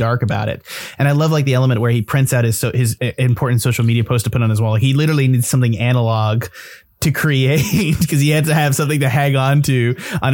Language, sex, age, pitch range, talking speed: English, male, 20-39, 115-140 Hz, 250 wpm